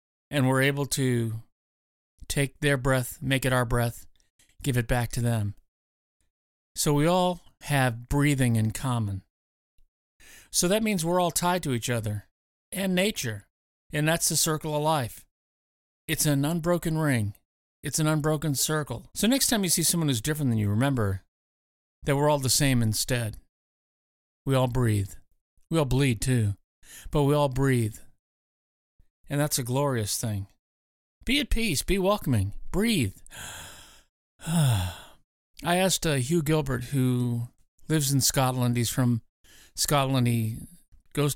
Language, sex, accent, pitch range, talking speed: English, male, American, 105-150 Hz, 145 wpm